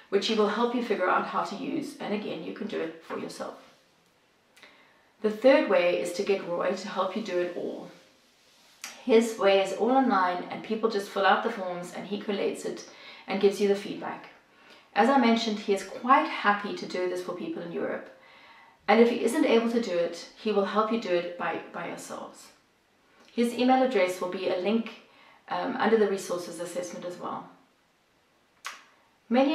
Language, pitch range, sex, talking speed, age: English, 185-230 Hz, female, 200 wpm, 30-49